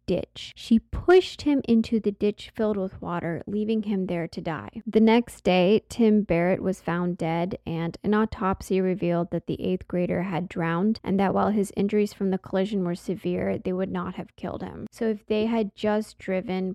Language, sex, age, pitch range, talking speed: English, female, 10-29, 180-220 Hz, 195 wpm